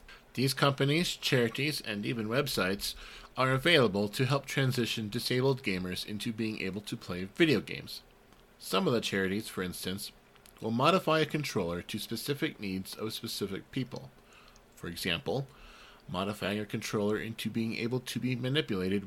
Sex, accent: male, American